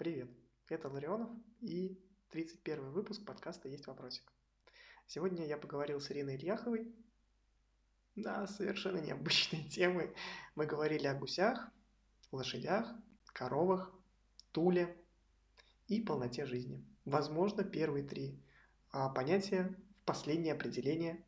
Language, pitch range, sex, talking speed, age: Russian, 145-205 Hz, male, 105 wpm, 20-39